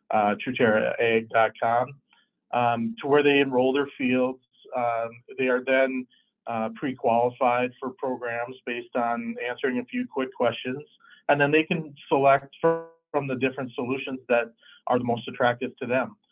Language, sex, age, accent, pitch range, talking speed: English, male, 40-59, American, 115-135 Hz, 145 wpm